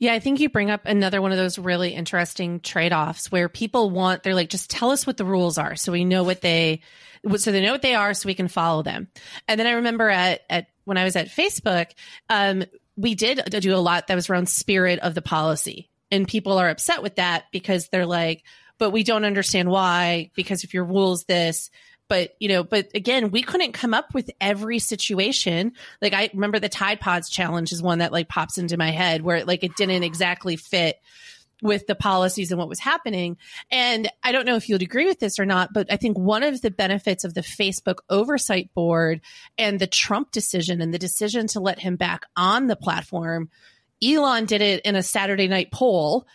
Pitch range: 180-215 Hz